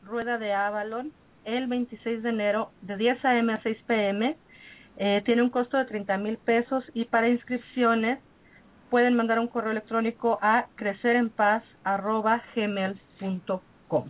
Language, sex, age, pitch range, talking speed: Spanish, female, 40-59, 210-245 Hz, 130 wpm